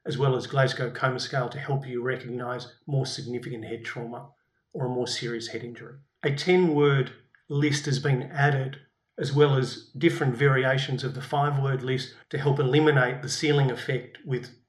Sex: male